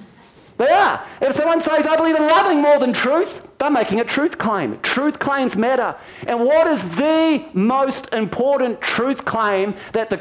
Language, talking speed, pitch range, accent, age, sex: English, 175 wpm, 215-285 Hz, Australian, 40-59, male